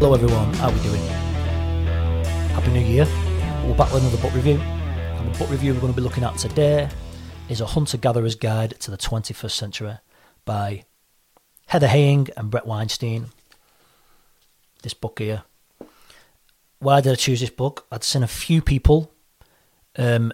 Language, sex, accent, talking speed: English, male, British, 160 wpm